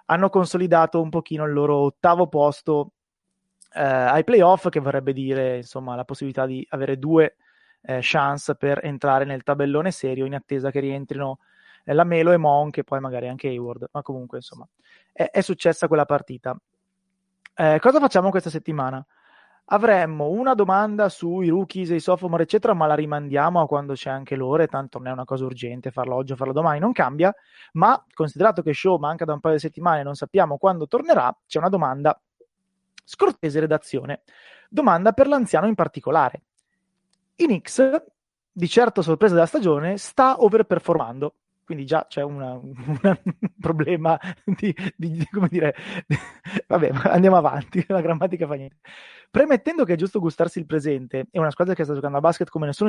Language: Italian